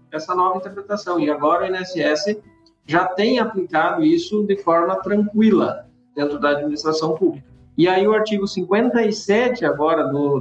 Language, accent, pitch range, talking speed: Portuguese, Brazilian, 145-195 Hz, 150 wpm